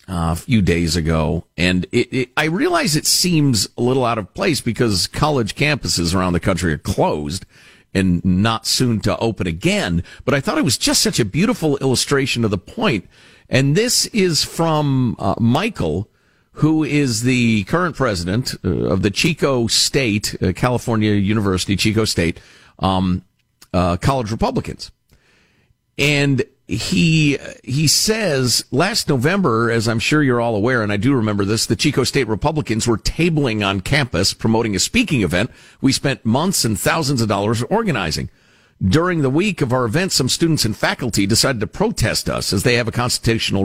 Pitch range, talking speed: 105-145 Hz, 170 wpm